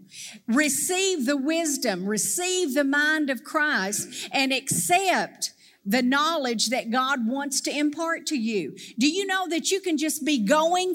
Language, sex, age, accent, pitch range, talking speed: English, female, 50-69, American, 265-365 Hz, 155 wpm